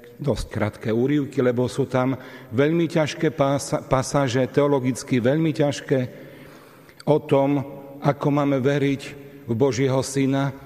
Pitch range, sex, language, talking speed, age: 120-145 Hz, male, Slovak, 115 wpm, 40-59